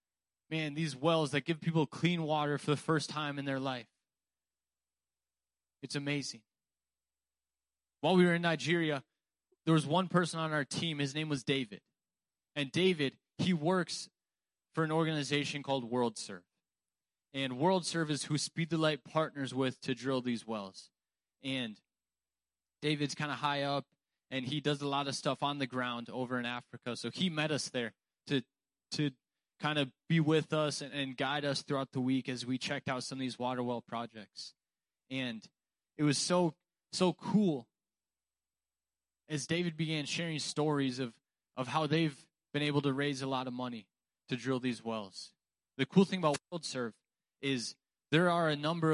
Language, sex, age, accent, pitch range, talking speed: English, male, 20-39, American, 125-155 Hz, 170 wpm